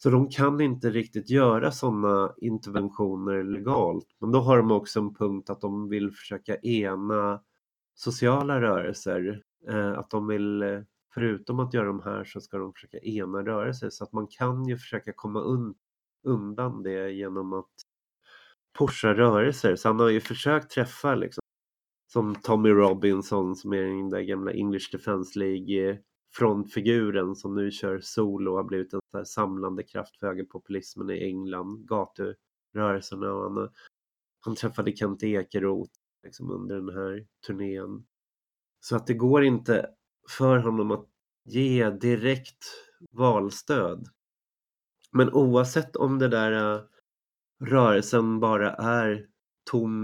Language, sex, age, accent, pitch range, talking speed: Swedish, male, 30-49, native, 100-125 Hz, 145 wpm